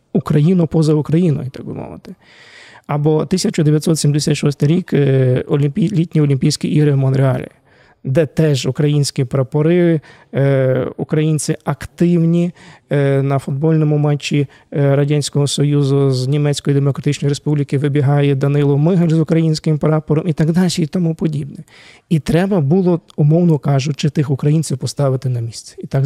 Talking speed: 120 wpm